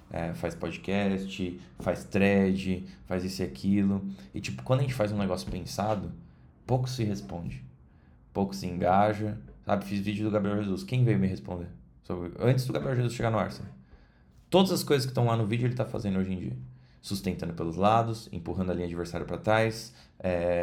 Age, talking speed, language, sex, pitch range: 20-39, 195 wpm, Portuguese, male, 90-110 Hz